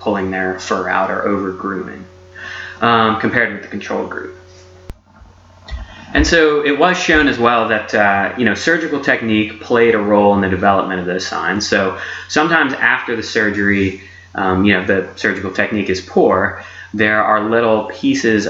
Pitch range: 95-110 Hz